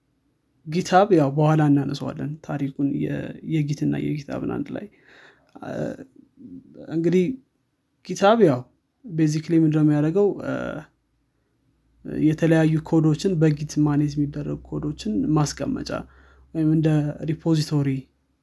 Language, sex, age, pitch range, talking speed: Amharic, male, 20-39, 140-160 Hz, 80 wpm